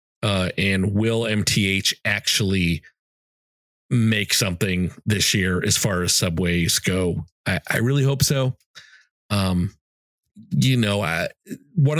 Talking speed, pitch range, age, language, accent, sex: 115 wpm, 95-130 Hz, 40-59, English, American, male